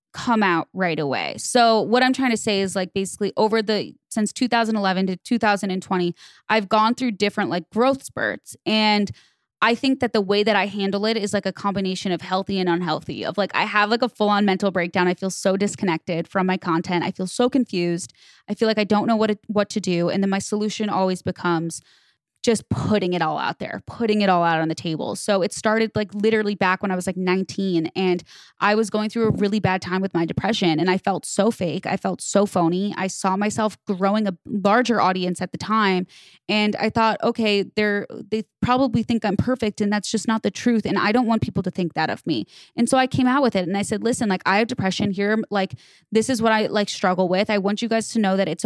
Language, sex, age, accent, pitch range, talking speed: English, female, 20-39, American, 185-220 Hz, 240 wpm